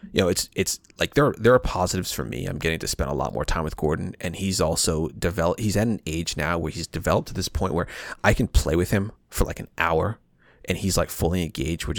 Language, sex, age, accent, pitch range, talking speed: English, male, 30-49, American, 75-95 Hz, 260 wpm